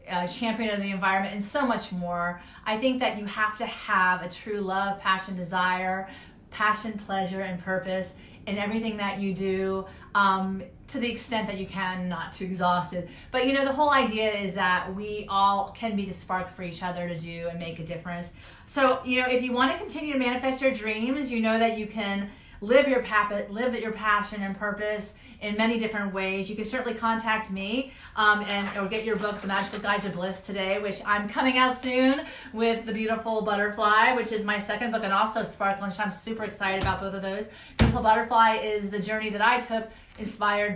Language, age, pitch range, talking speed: English, 30-49, 190-225 Hz, 210 wpm